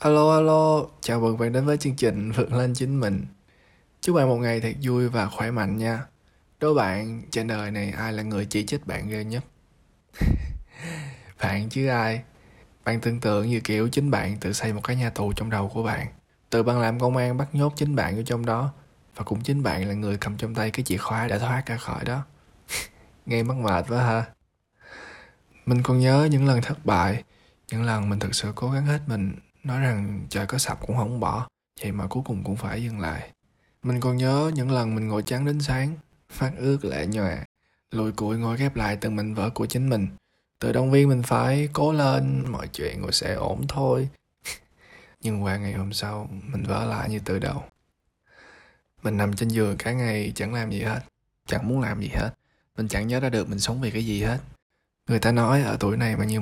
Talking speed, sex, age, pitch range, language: 220 wpm, male, 20-39, 105-130 Hz, Vietnamese